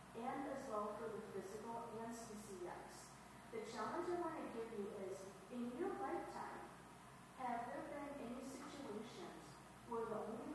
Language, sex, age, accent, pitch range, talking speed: English, female, 40-59, American, 205-235 Hz, 165 wpm